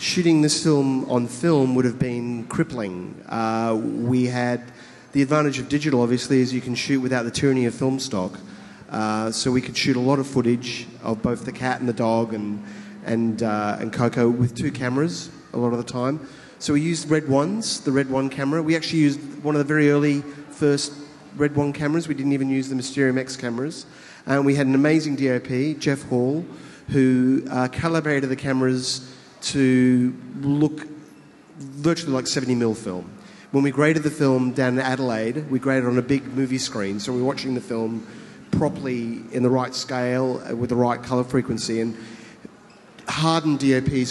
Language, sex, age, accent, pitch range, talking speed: English, male, 30-49, Australian, 125-150 Hz, 190 wpm